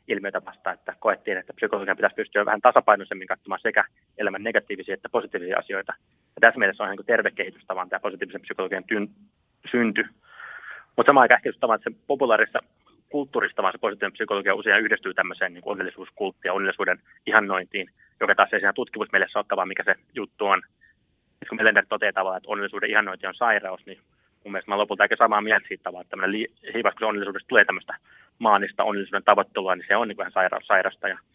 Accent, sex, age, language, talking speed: native, male, 20-39, Finnish, 175 wpm